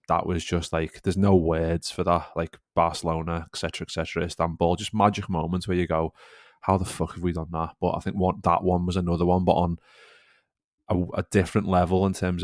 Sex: male